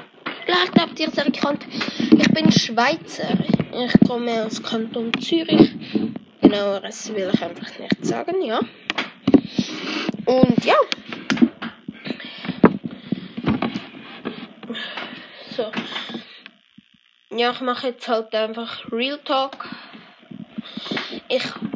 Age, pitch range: 20-39, 230-255 Hz